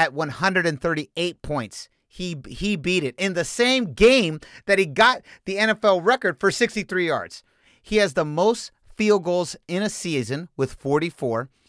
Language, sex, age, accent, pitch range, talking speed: English, male, 40-59, American, 125-175 Hz, 160 wpm